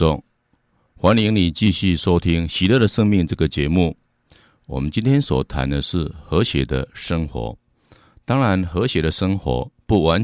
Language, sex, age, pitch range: Chinese, male, 50-69, 75-110 Hz